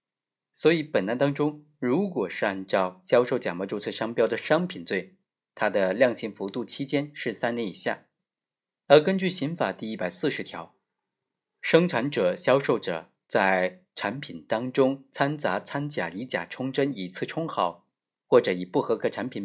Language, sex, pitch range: Chinese, male, 100-155 Hz